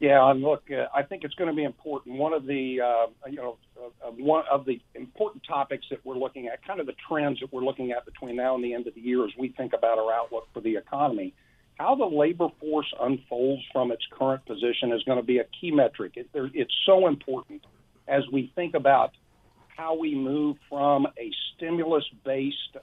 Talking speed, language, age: 220 wpm, English, 50-69